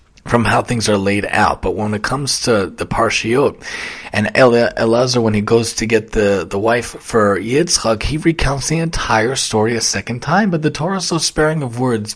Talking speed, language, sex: 200 wpm, English, male